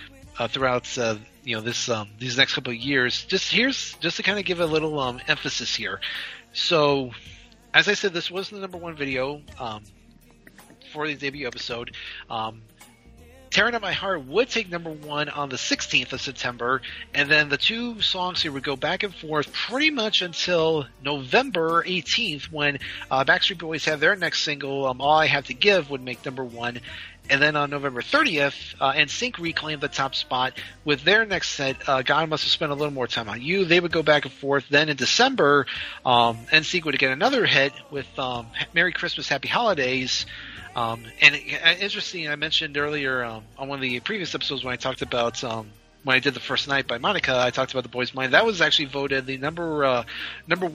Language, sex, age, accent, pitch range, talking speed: English, male, 30-49, American, 125-160 Hz, 210 wpm